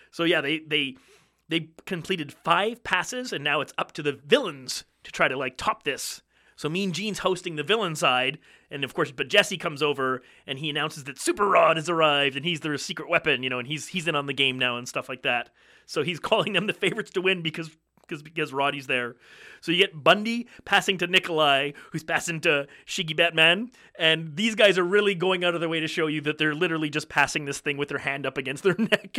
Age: 30-49